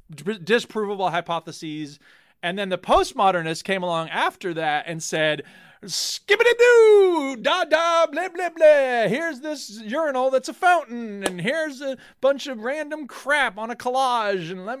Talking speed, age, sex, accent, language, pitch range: 155 wpm, 30-49, male, American, English, 165-235 Hz